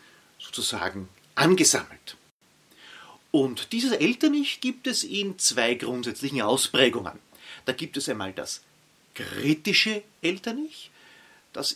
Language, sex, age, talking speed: German, male, 40-59, 95 wpm